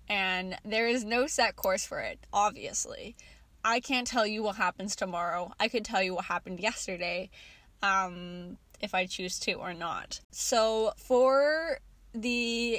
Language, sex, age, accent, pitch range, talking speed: English, female, 10-29, American, 190-240 Hz, 155 wpm